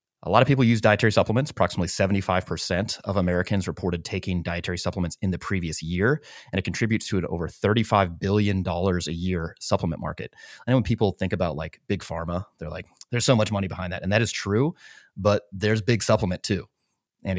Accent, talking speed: American, 200 wpm